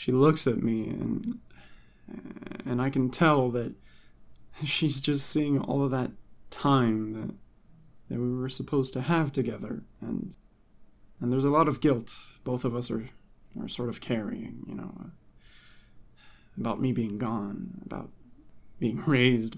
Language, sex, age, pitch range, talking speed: English, male, 20-39, 115-150 Hz, 150 wpm